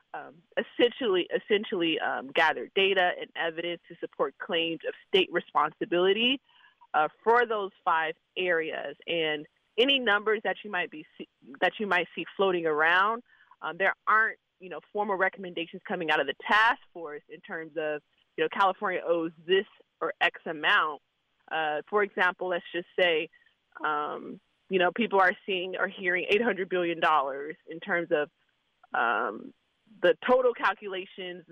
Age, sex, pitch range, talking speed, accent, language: 30-49, female, 170-225 Hz, 150 wpm, American, English